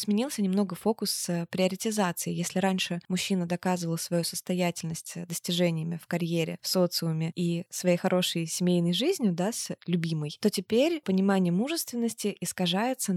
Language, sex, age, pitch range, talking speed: Russian, female, 20-39, 170-200 Hz, 130 wpm